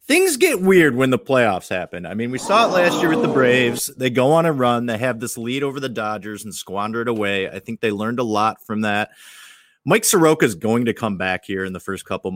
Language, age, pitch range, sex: English, 30-49, 100-135 Hz, male